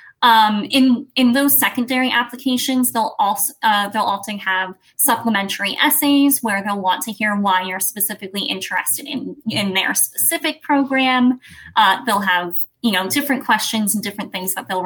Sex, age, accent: female, 20-39, American